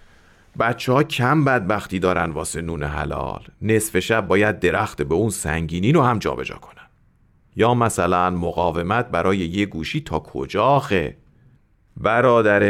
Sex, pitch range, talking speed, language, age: male, 90-115 Hz, 140 wpm, Persian, 40-59